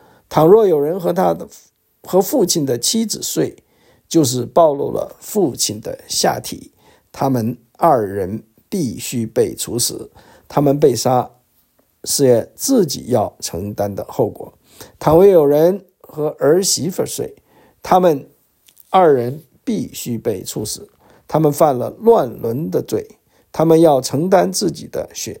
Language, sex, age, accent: English, male, 50-69, Chinese